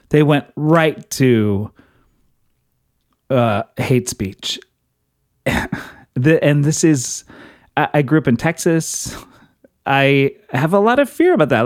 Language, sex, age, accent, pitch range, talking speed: English, male, 30-49, American, 125-155 Hz, 125 wpm